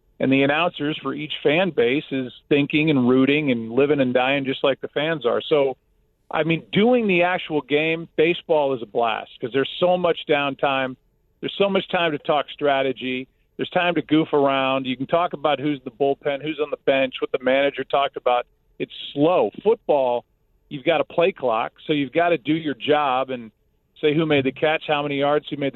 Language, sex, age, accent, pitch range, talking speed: English, male, 40-59, American, 135-170 Hz, 210 wpm